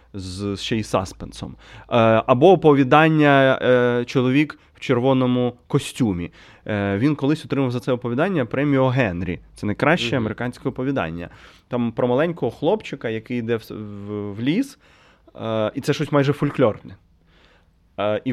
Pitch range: 105-140 Hz